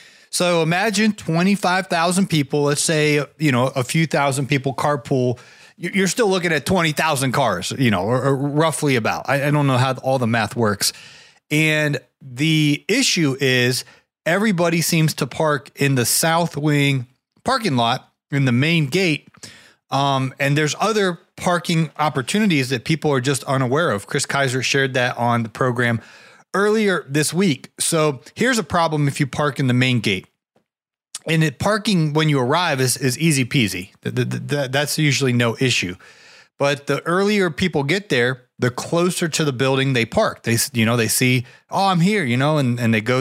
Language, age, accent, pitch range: English, 30-49, American, 130-165 Hz